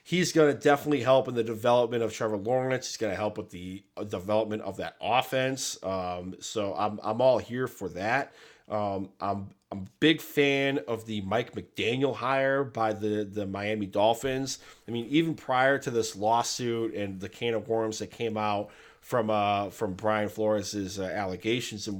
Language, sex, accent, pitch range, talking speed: English, male, American, 110-135 Hz, 185 wpm